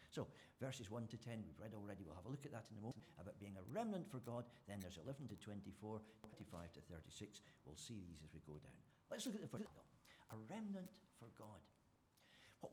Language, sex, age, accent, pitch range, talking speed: English, male, 60-79, British, 105-150 Hz, 230 wpm